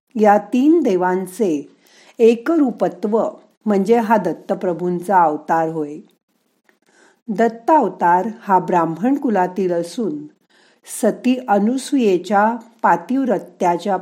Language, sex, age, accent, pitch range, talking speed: Marathi, female, 50-69, native, 185-235 Hz, 50 wpm